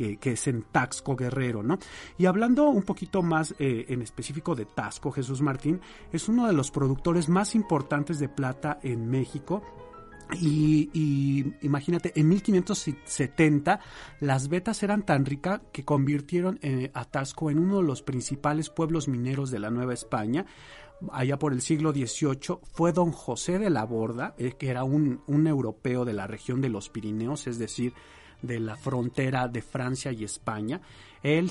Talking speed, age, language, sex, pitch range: 170 wpm, 40-59, Spanish, male, 125-155 Hz